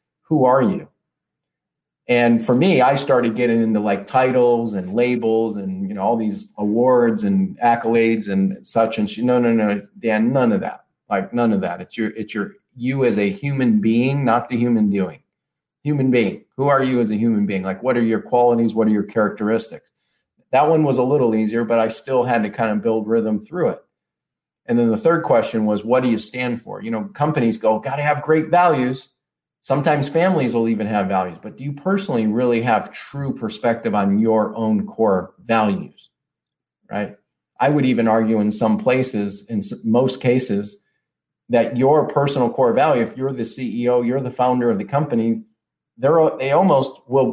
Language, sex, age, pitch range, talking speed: English, male, 40-59, 110-135 Hz, 195 wpm